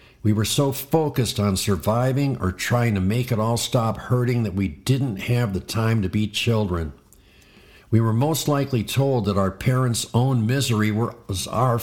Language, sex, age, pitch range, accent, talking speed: English, male, 50-69, 100-120 Hz, American, 180 wpm